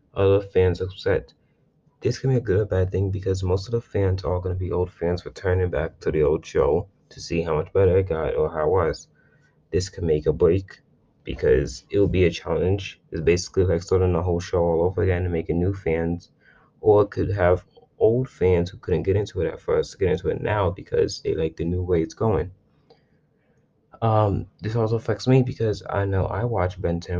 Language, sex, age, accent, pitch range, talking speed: English, male, 20-39, American, 90-115 Hz, 225 wpm